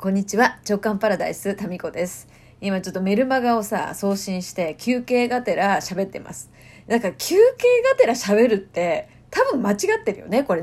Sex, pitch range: female, 195-300 Hz